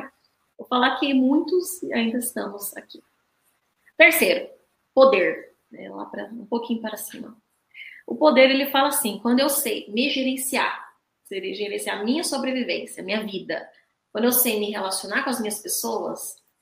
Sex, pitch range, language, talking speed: female, 215-260 Hz, Portuguese, 140 wpm